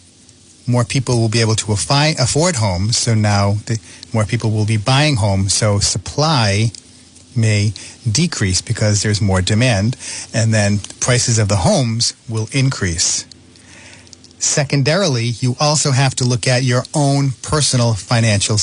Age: 40-59